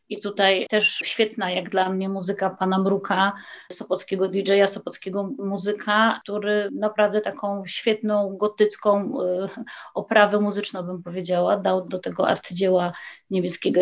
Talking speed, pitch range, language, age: 120 wpm, 200-220 Hz, Polish, 30-49